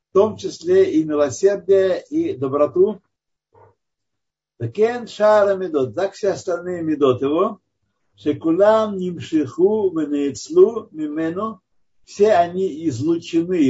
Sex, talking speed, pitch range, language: male, 95 wpm, 130-205 Hz, Russian